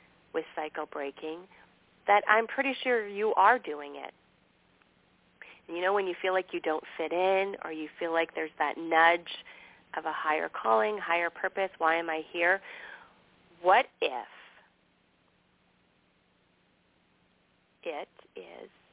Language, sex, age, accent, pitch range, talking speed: English, female, 40-59, American, 155-190 Hz, 135 wpm